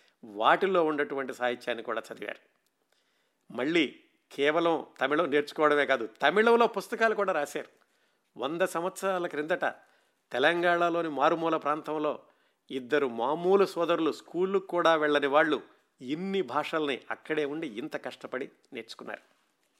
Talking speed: 100 wpm